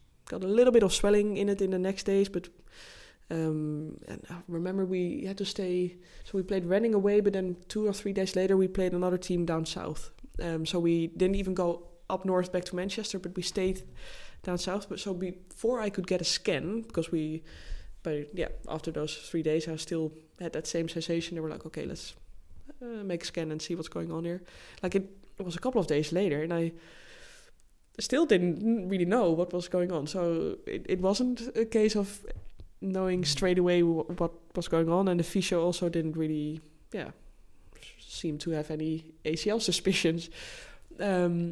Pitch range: 165-195 Hz